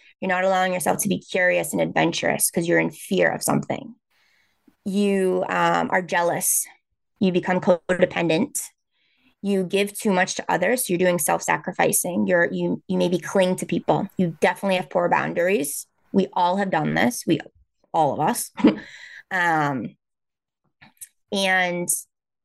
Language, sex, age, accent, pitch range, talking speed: English, female, 20-39, American, 175-200 Hz, 145 wpm